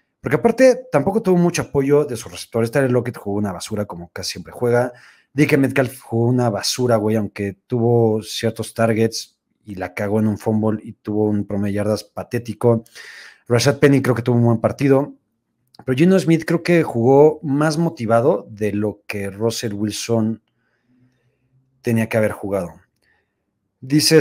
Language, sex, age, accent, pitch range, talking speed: Spanish, male, 40-59, Mexican, 110-140 Hz, 165 wpm